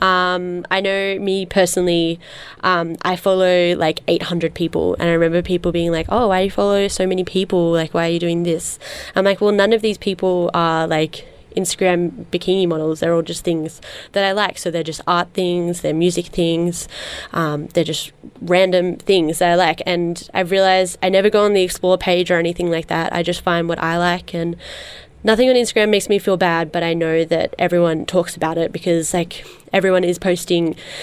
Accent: Australian